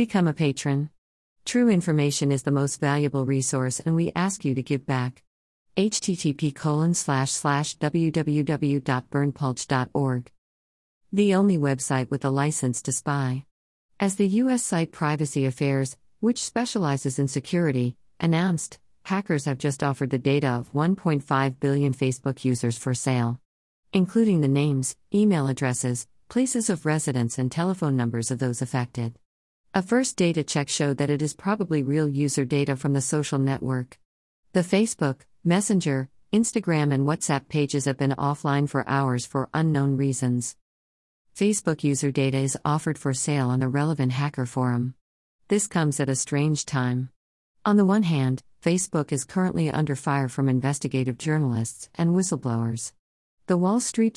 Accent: American